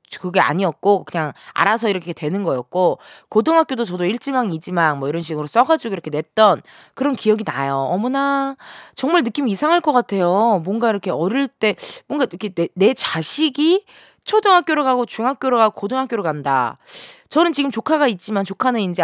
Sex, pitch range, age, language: female, 180-280 Hz, 20-39, Korean